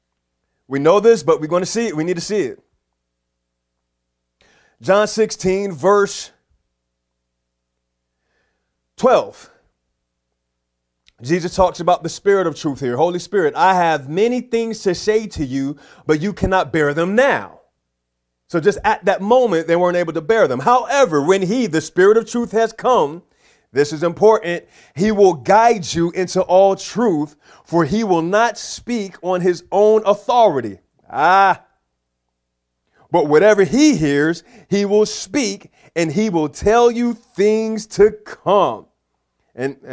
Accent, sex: American, male